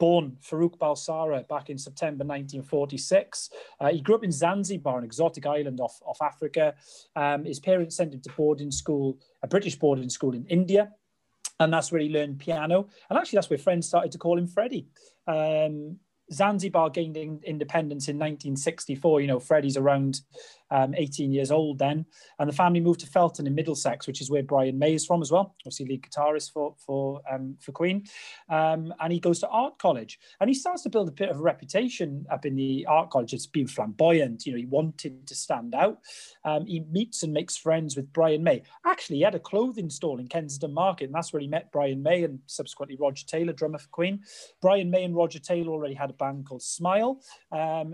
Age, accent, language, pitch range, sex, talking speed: 30-49, British, English, 140-175 Hz, male, 205 wpm